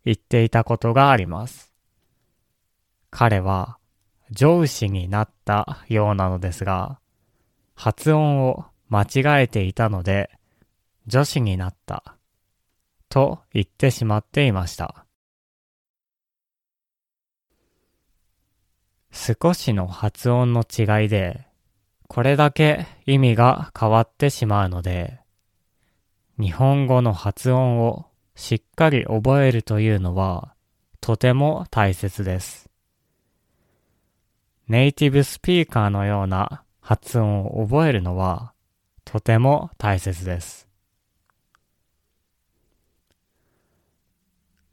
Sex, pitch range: male, 95-125 Hz